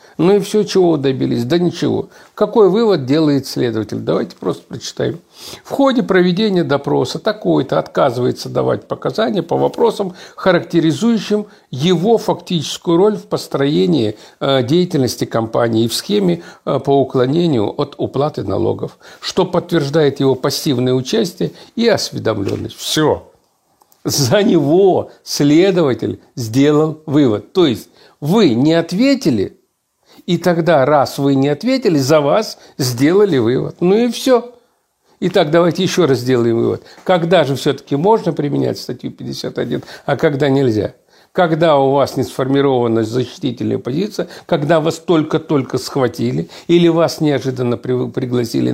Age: 60-79